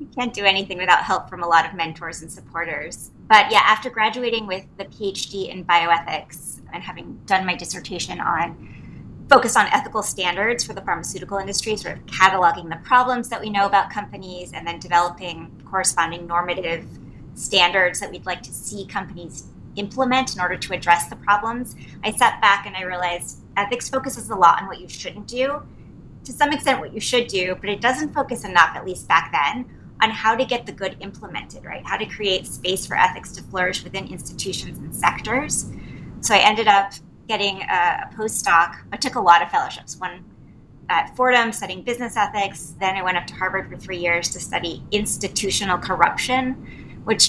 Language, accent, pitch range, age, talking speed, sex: English, American, 180-225 Hz, 30-49, 190 wpm, female